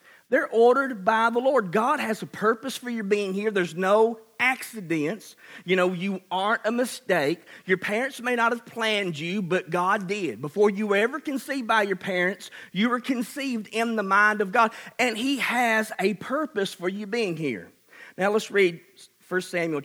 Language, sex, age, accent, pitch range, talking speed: English, male, 40-59, American, 145-225 Hz, 185 wpm